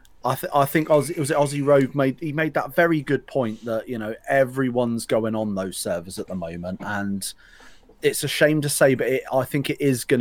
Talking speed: 235 wpm